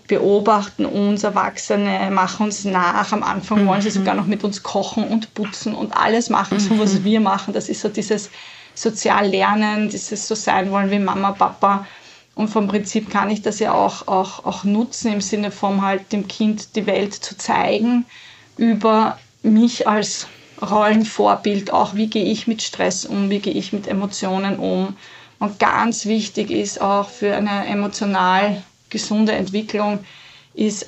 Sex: female